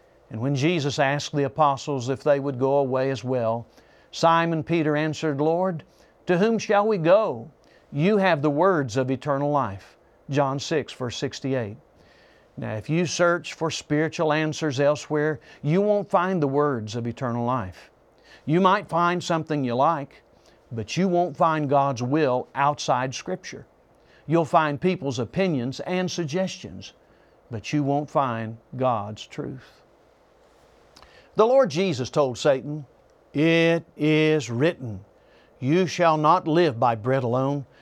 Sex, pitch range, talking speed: male, 130-175 Hz, 145 wpm